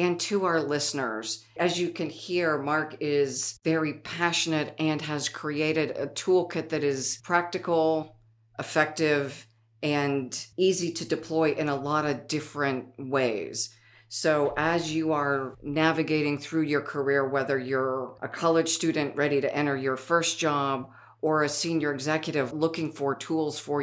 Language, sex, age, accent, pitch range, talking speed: English, female, 50-69, American, 135-155 Hz, 145 wpm